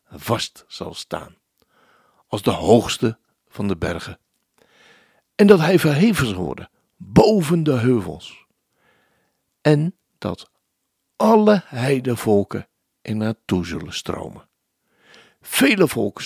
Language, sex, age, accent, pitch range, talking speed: Dutch, male, 60-79, Dutch, 100-170 Hz, 105 wpm